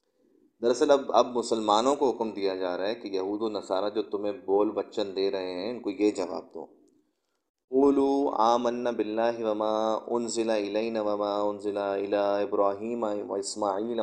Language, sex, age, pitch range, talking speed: Urdu, male, 30-49, 100-115 Hz, 165 wpm